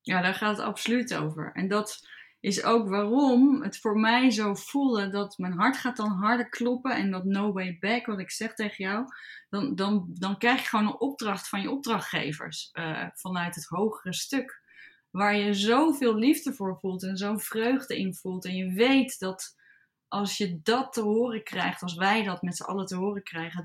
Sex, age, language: female, 10-29, Dutch